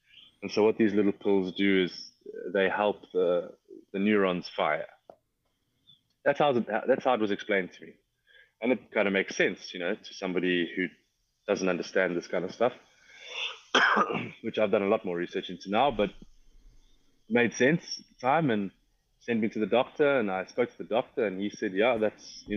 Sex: male